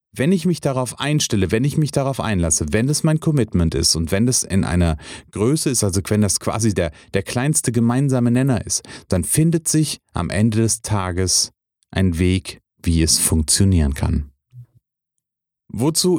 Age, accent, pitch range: 40-59, German, 95-125 Hz